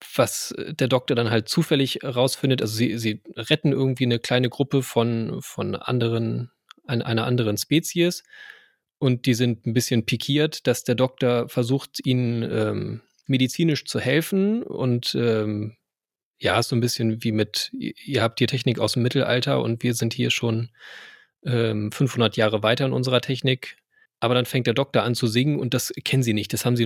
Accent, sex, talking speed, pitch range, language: German, male, 175 wpm, 115-130 Hz, German